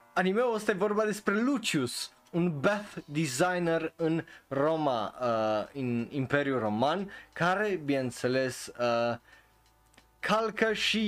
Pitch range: 130-175 Hz